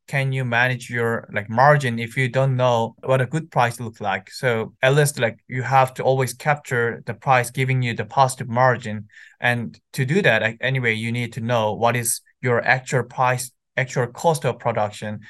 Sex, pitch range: male, 120-145 Hz